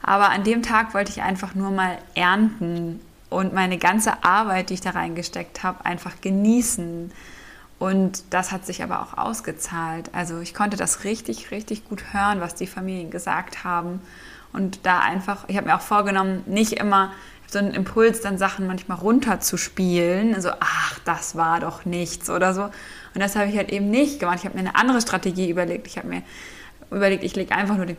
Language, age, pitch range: German, 20-39, 175-200 Hz